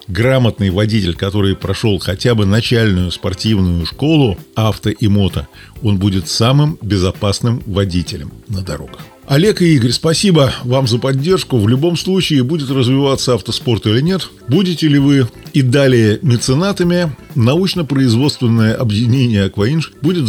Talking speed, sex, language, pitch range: 130 wpm, male, Russian, 105-135 Hz